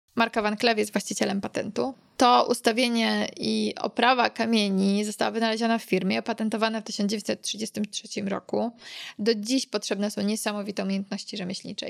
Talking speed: 130 wpm